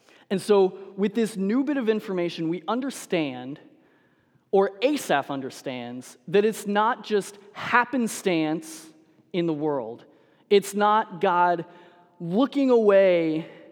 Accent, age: American, 20-39